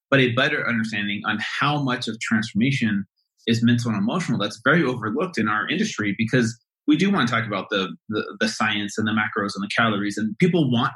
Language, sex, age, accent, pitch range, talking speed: English, male, 30-49, American, 110-125 Hz, 215 wpm